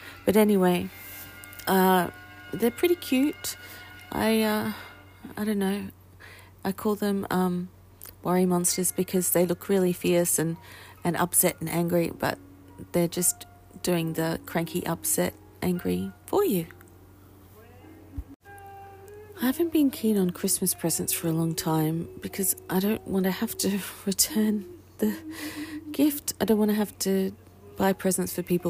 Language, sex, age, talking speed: English, female, 40-59, 140 wpm